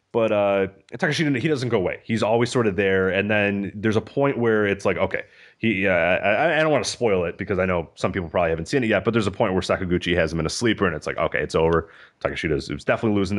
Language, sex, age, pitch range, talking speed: English, male, 30-49, 95-120 Hz, 280 wpm